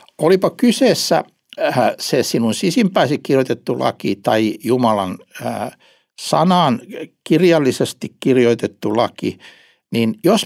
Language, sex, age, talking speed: Finnish, male, 60-79, 85 wpm